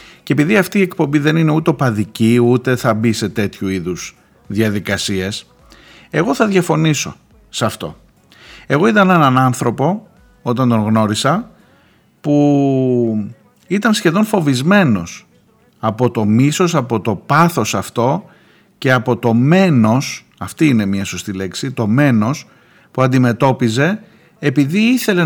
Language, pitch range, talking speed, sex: Greek, 110-160 Hz, 130 wpm, male